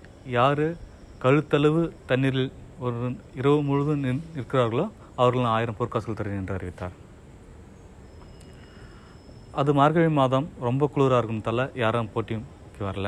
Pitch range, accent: 100-140 Hz, native